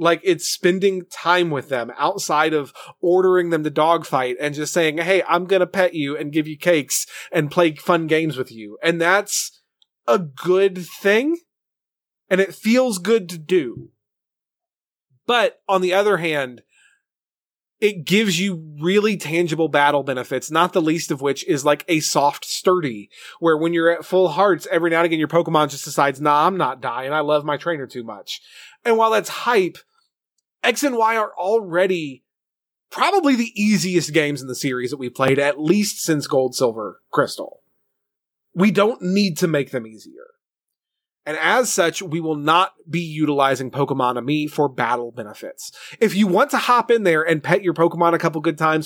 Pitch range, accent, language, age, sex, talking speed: 145-195 Hz, American, English, 30-49, male, 180 wpm